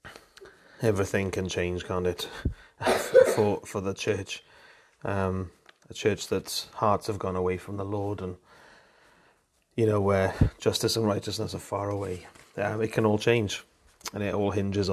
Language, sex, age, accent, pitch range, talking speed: English, male, 30-49, British, 95-105 Hz, 155 wpm